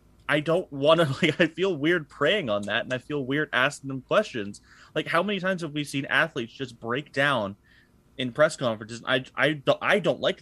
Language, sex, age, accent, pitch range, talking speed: English, male, 30-49, American, 140-205 Hz, 220 wpm